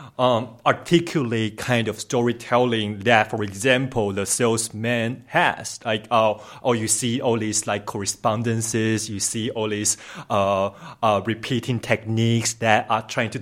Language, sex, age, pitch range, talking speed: English, male, 30-49, 110-130 Hz, 145 wpm